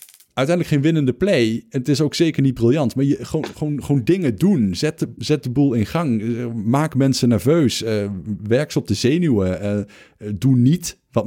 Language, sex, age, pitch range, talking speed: Dutch, male, 50-69, 105-140 Hz, 180 wpm